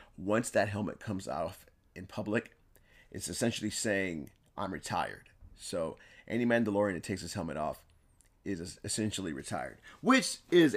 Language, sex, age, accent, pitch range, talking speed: English, male, 30-49, American, 100-130 Hz, 140 wpm